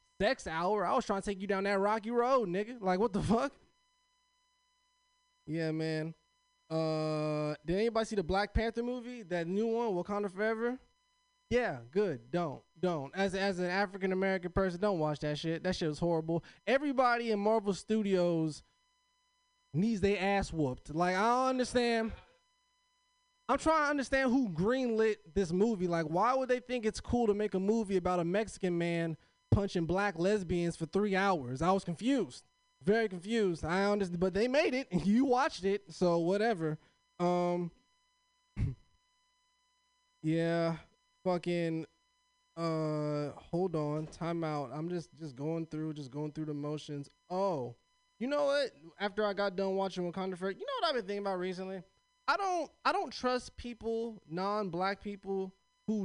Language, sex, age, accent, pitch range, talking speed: English, male, 20-39, American, 170-250 Hz, 165 wpm